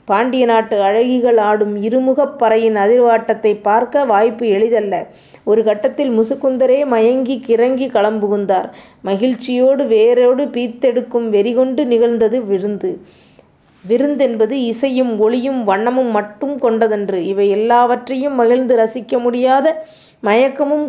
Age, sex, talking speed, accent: 20-39, female, 100 wpm, native